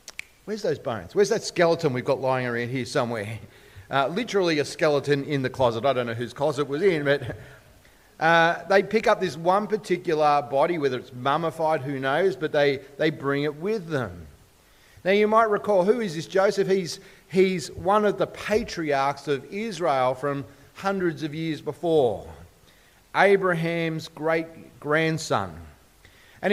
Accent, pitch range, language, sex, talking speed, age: Australian, 140-195 Hz, English, male, 160 wpm, 40-59